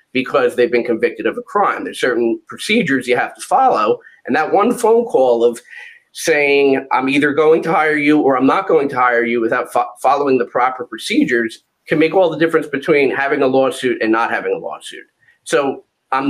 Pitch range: 135-190 Hz